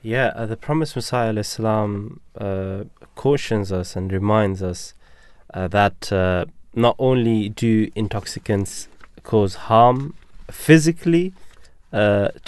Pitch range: 100-125 Hz